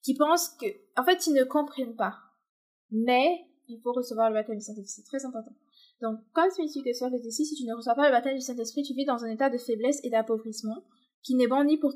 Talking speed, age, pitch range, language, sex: 255 wpm, 20-39, 230-280 Hz, French, female